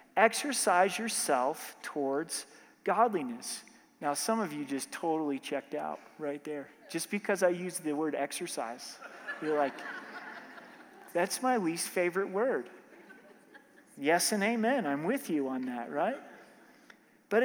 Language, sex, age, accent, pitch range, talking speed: English, male, 40-59, American, 160-225 Hz, 130 wpm